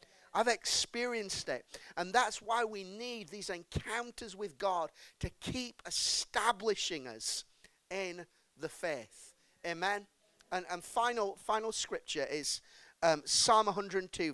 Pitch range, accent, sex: 150-205 Hz, British, male